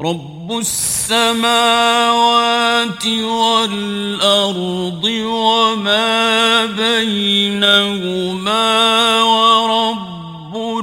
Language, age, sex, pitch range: Persian, 50-69, male, 180-225 Hz